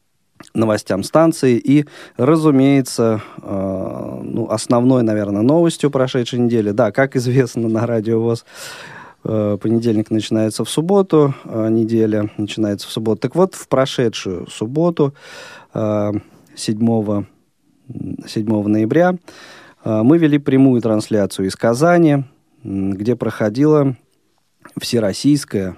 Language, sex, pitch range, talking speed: Russian, male, 105-135 Hz, 110 wpm